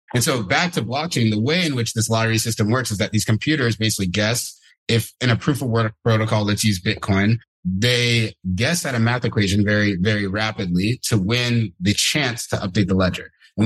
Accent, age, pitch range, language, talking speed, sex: American, 30-49, 105-125 Hz, English, 205 wpm, male